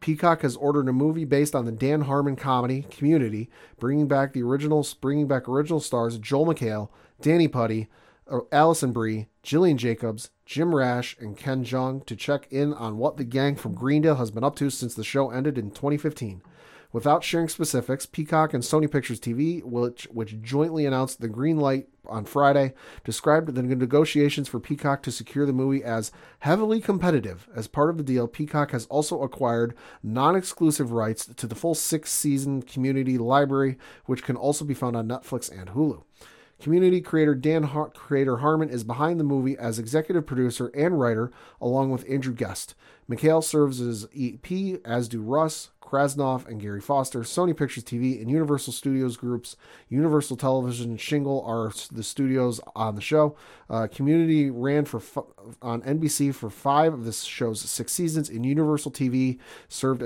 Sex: male